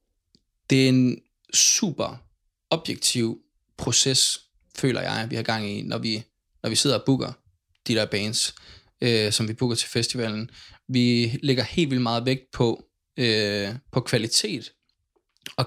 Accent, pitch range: native, 110-130 Hz